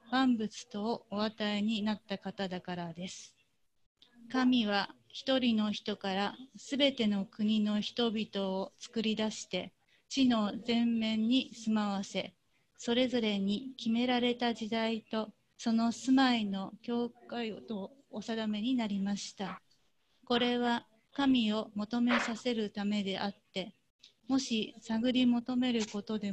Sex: female